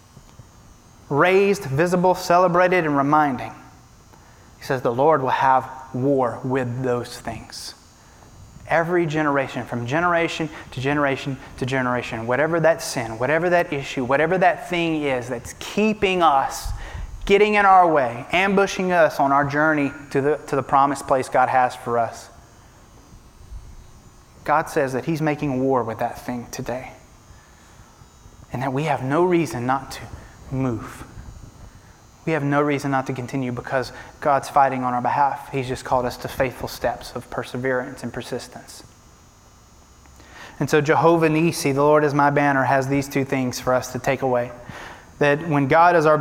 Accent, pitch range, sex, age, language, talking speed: American, 125-160 Hz, male, 30-49, English, 155 wpm